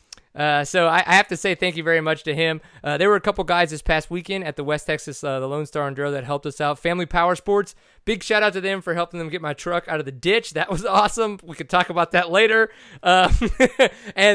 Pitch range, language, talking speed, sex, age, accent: 150-185 Hz, English, 270 wpm, male, 30-49, American